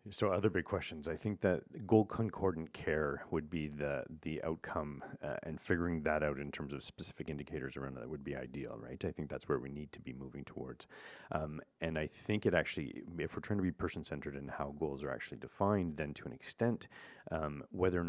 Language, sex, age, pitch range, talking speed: English, male, 30-49, 75-90 Hz, 215 wpm